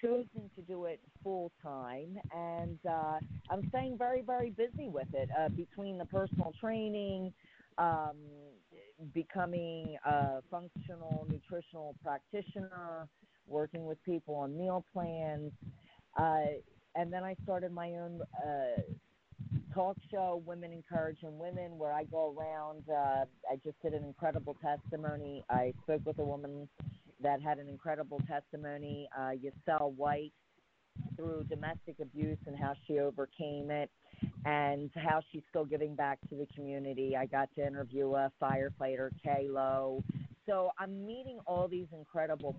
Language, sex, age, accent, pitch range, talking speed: English, female, 40-59, American, 140-170 Hz, 140 wpm